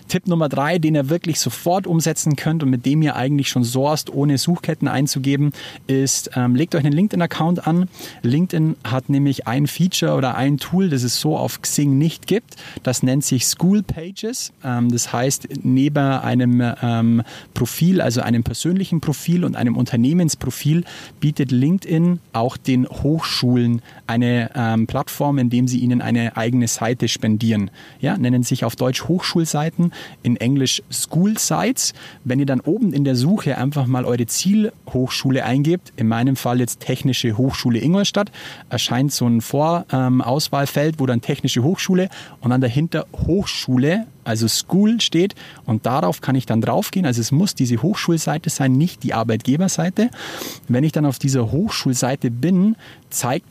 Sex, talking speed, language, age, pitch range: male, 160 wpm, German, 30-49, 125-165 Hz